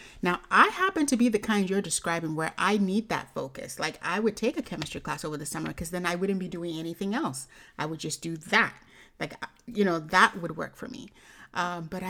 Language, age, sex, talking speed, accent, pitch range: English, 30-49, female, 235 wpm, American, 170-205 Hz